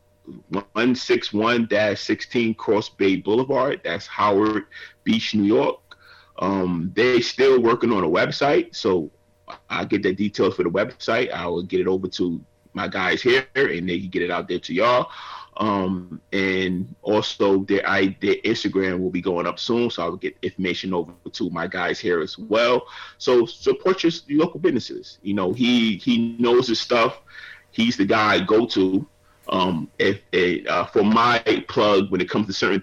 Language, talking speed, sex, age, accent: English, 170 wpm, male, 30-49, American